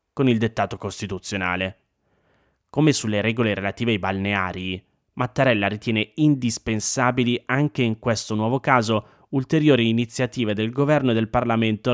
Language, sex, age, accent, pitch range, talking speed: Italian, male, 20-39, native, 105-130 Hz, 125 wpm